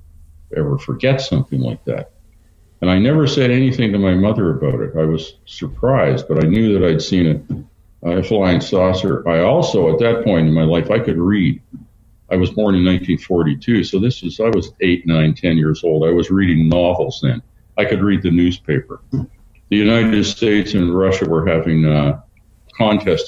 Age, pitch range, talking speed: 50-69, 85-110 Hz, 190 wpm